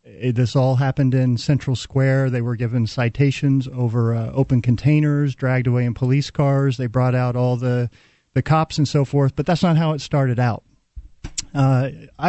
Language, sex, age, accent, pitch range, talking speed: English, male, 40-59, American, 120-135 Hz, 190 wpm